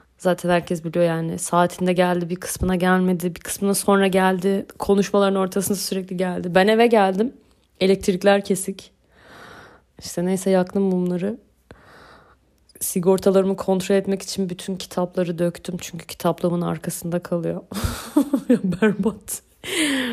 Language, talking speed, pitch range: Turkish, 115 wpm, 175-205 Hz